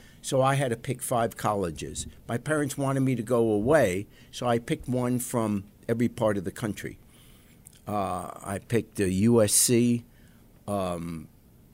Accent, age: American, 60-79